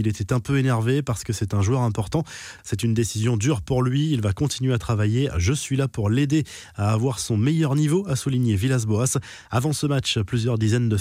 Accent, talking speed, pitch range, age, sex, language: French, 225 wpm, 110-135 Hz, 20-39, male, French